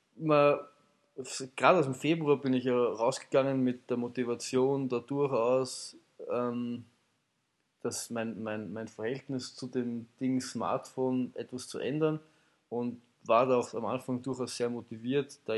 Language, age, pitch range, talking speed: German, 20-39, 125-150 Hz, 130 wpm